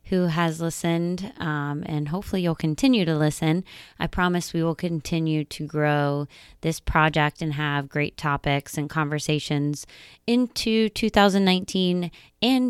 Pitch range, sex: 150-180 Hz, female